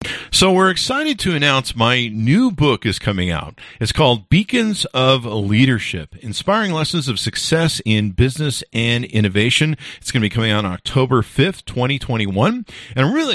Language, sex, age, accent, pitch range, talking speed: English, male, 50-69, American, 105-140 Hz, 165 wpm